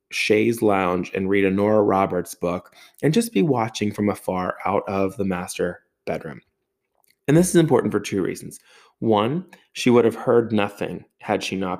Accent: American